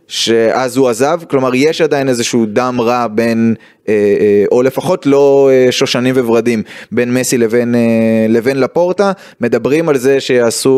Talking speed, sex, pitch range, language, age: 135 wpm, male, 115-140 Hz, Hebrew, 20-39